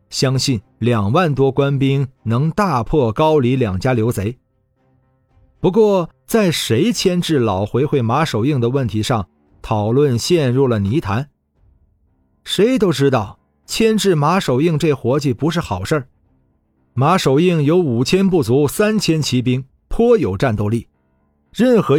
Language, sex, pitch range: Chinese, male, 110-160 Hz